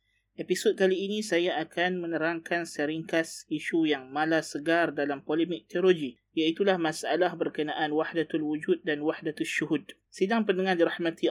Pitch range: 155-180 Hz